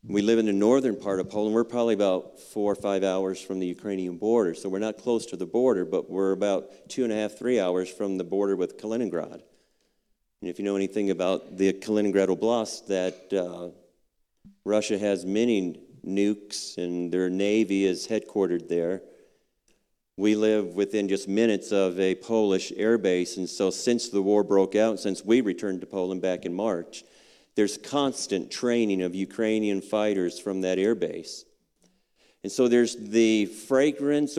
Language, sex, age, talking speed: English, male, 50-69, 175 wpm